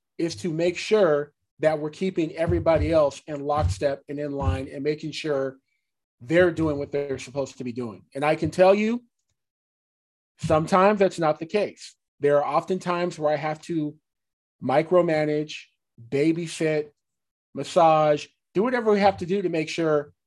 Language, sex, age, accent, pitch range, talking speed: English, male, 40-59, American, 145-180 Hz, 165 wpm